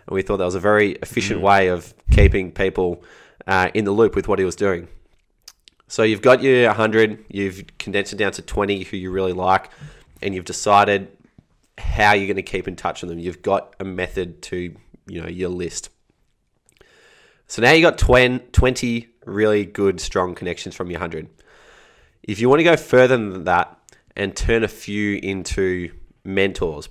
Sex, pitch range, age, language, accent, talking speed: male, 90-105 Hz, 20-39, English, Australian, 185 wpm